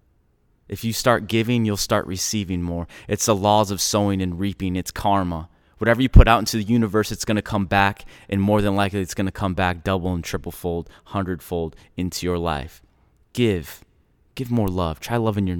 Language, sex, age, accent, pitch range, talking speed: English, male, 20-39, American, 85-105 Hz, 195 wpm